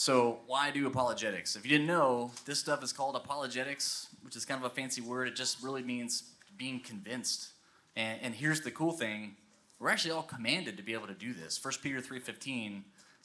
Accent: American